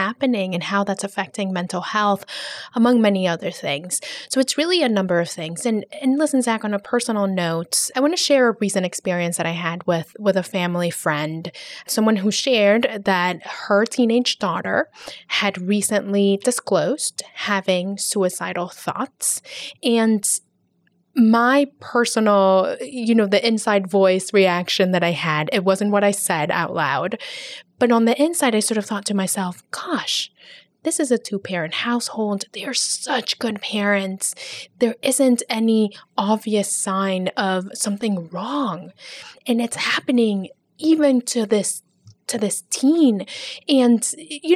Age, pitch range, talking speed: 10-29, 190-240 Hz, 155 wpm